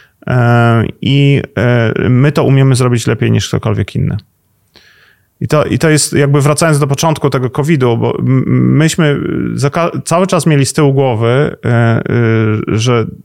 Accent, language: native, Polish